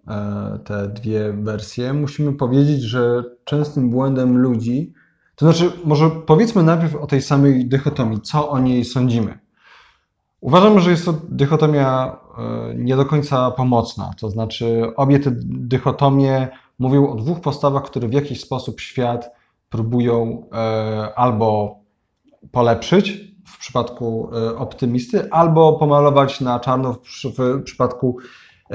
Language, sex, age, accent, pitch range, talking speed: Polish, male, 20-39, native, 120-145 Hz, 120 wpm